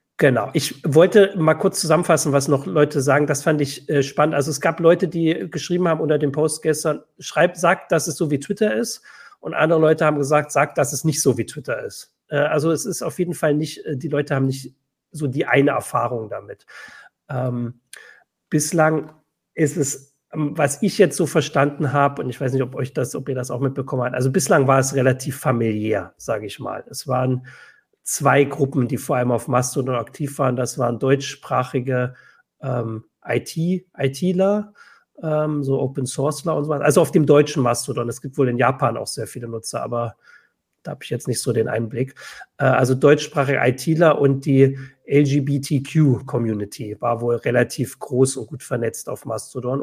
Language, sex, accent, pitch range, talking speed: German, male, German, 130-155 Hz, 190 wpm